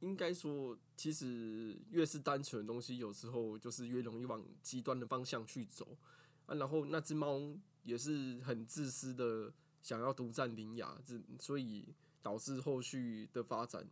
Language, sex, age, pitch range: Chinese, male, 20-39, 120-155 Hz